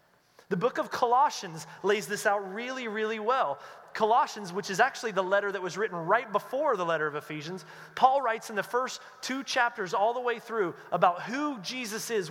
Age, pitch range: 30-49, 195-250 Hz